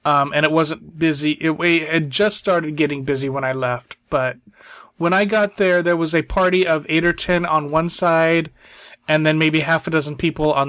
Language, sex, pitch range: English, male, 140-170 Hz